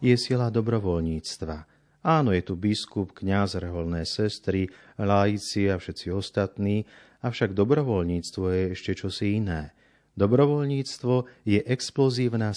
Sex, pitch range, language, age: male, 95-115 Hz, Slovak, 40-59